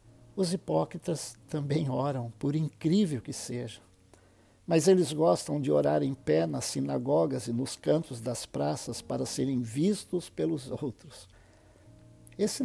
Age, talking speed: 60-79, 135 wpm